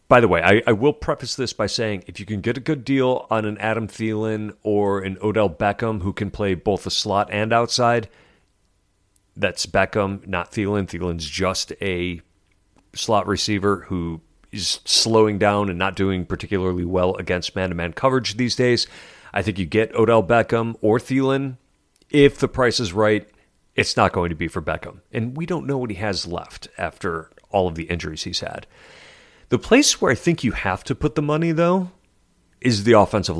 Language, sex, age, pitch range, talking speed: English, male, 40-59, 90-120 Hz, 190 wpm